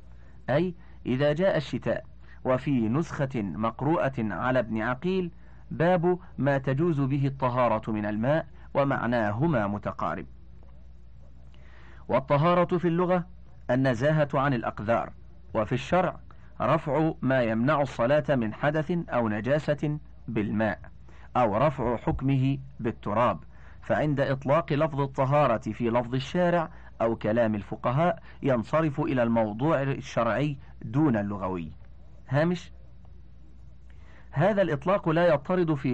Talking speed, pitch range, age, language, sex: 105 wpm, 110-155 Hz, 40-59, Arabic, male